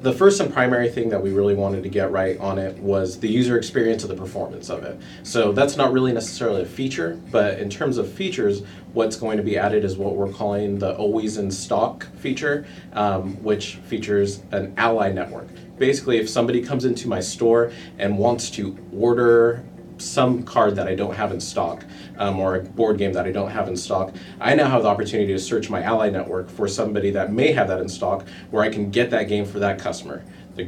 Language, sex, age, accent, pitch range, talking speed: English, male, 30-49, American, 95-115 Hz, 220 wpm